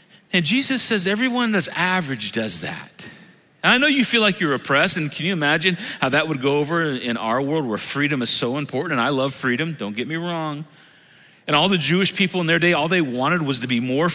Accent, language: American, English